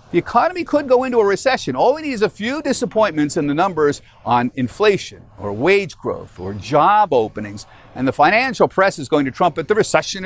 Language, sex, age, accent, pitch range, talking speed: English, male, 50-69, American, 120-195 Hz, 205 wpm